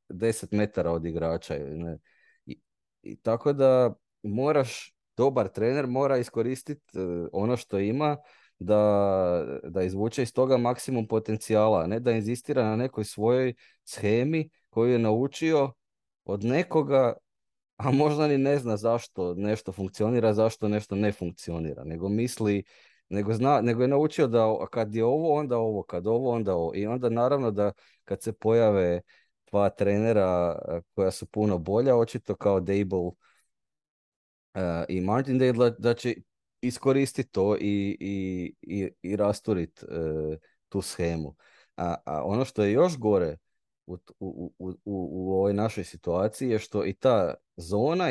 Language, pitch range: Croatian, 95-120 Hz